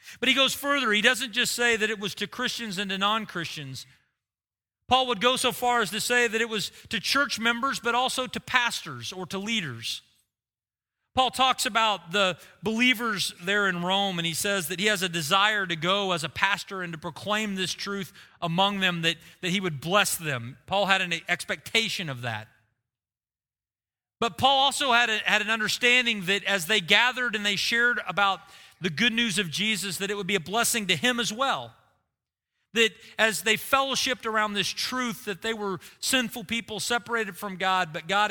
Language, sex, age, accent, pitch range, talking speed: English, male, 40-59, American, 170-230 Hz, 195 wpm